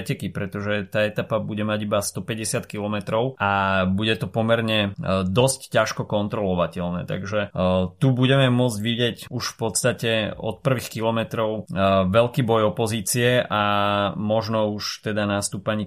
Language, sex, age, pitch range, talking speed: Slovak, male, 30-49, 95-110 Hz, 145 wpm